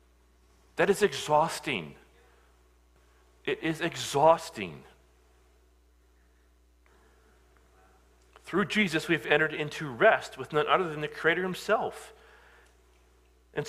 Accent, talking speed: American, 90 wpm